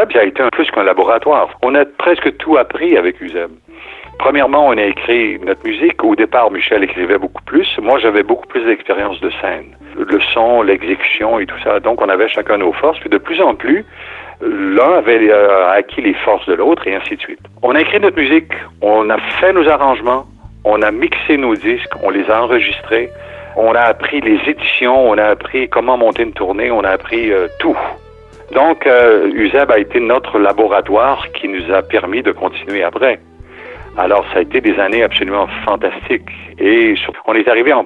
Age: 60-79